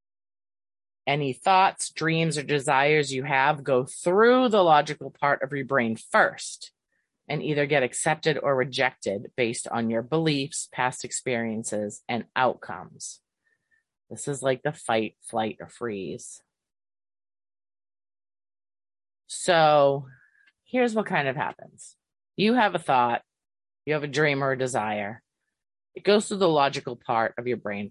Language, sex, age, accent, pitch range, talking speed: English, female, 30-49, American, 125-190 Hz, 140 wpm